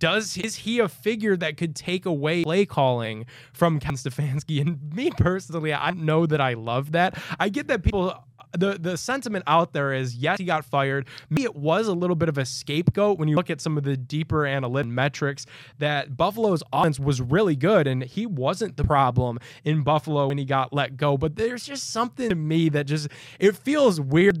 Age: 20-39